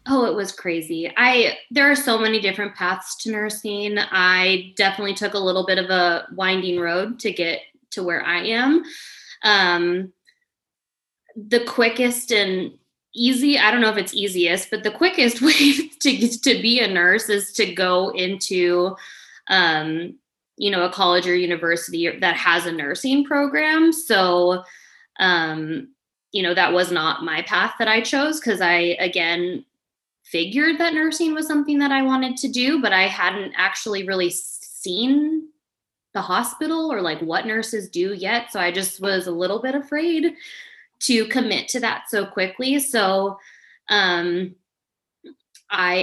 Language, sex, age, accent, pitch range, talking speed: English, female, 20-39, American, 185-260 Hz, 160 wpm